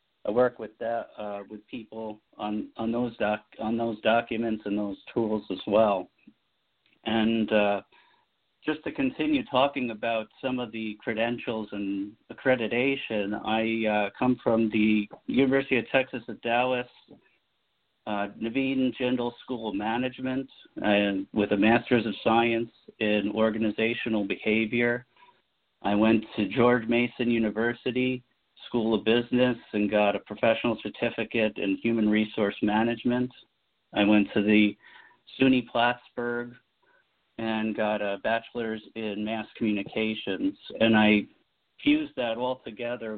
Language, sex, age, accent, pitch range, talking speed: English, male, 50-69, American, 105-120 Hz, 130 wpm